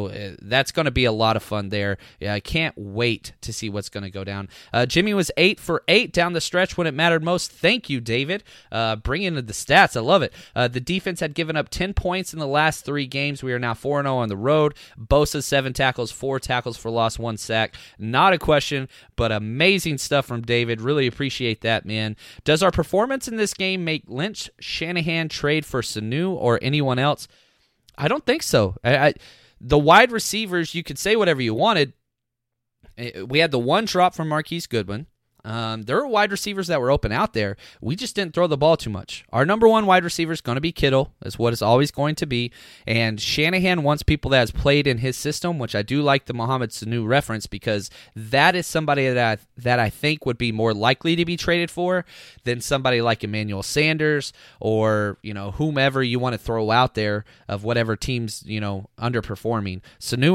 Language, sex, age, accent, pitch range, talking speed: English, male, 20-39, American, 115-160 Hz, 215 wpm